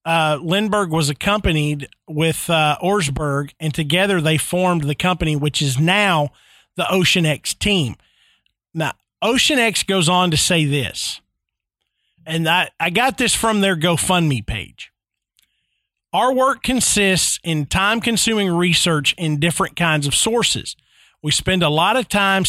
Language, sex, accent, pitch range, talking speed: English, male, American, 155-205 Hz, 145 wpm